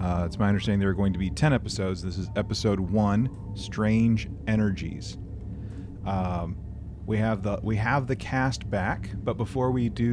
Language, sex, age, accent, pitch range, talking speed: English, male, 30-49, American, 95-110 Hz, 180 wpm